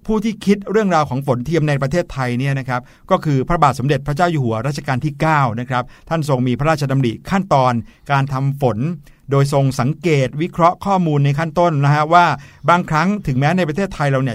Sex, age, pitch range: male, 60-79, 130-165 Hz